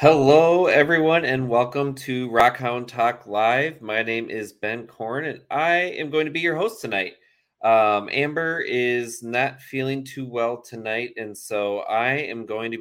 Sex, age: male, 30-49